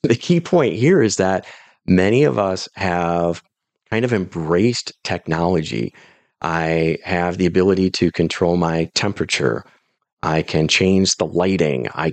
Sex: male